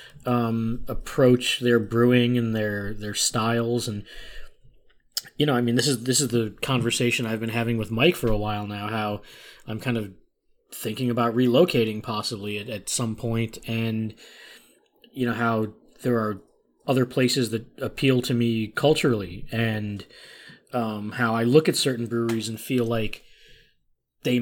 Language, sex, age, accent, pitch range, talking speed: English, male, 20-39, American, 110-130 Hz, 160 wpm